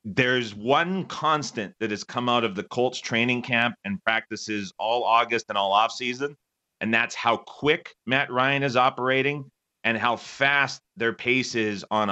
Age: 30-49